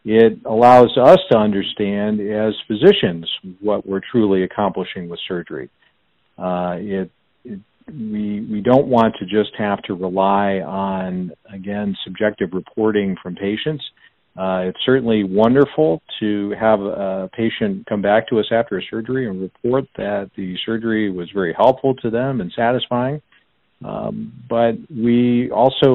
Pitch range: 95-120 Hz